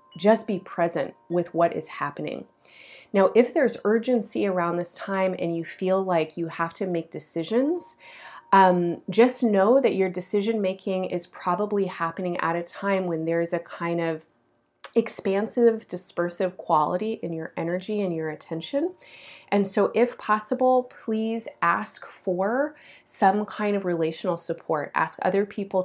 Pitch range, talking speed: 165-200 Hz, 150 wpm